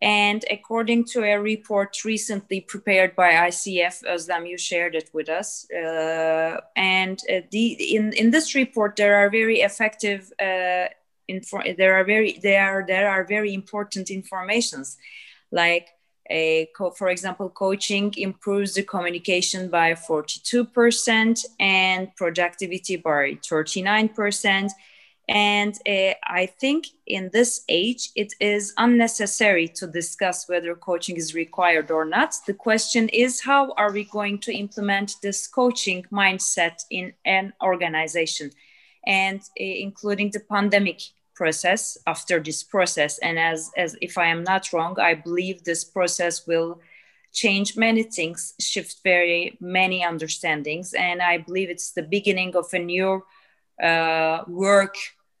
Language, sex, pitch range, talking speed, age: Turkish, female, 175-210 Hz, 140 wpm, 20-39